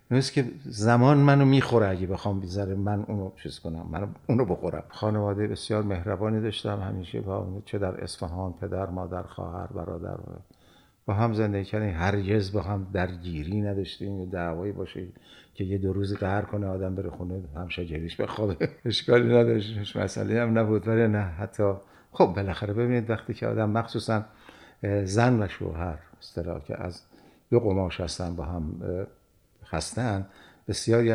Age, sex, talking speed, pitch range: 50-69, male, 160 wpm, 90-110 Hz